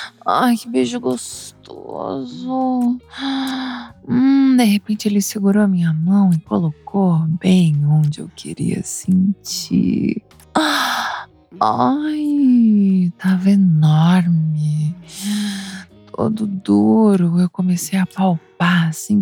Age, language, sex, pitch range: 20-39, Portuguese, female, 170-225 Hz